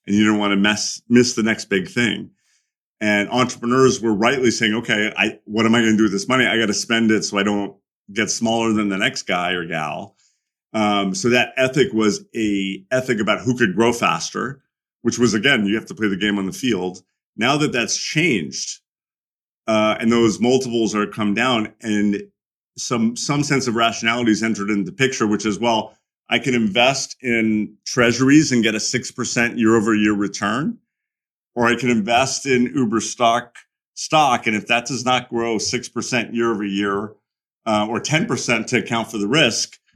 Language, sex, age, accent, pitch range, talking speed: English, male, 30-49, American, 100-120 Hz, 190 wpm